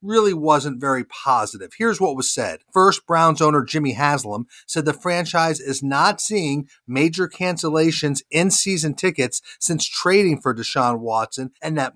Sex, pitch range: male, 135-170 Hz